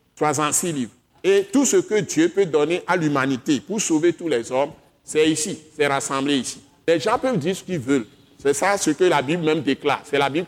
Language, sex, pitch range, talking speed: French, male, 135-175 Hz, 230 wpm